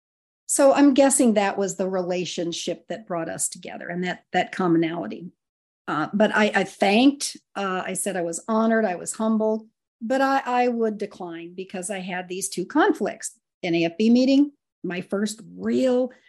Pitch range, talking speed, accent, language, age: 185-235 Hz, 170 wpm, American, English, 50-69